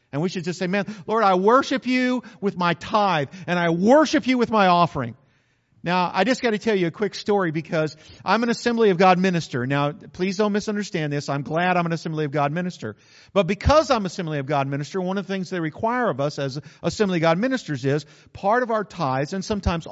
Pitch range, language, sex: 145-215 Hz, English, male